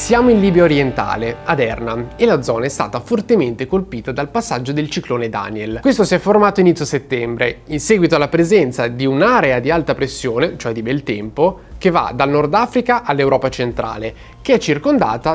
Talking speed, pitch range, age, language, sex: 185 wpm, 130-190 Hz, 20-39, Italian, male